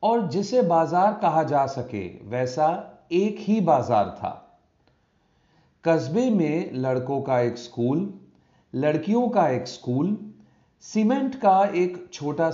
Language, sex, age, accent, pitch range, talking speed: Hindi, male, 40-59, native, 135-180 Hz, 120 wpm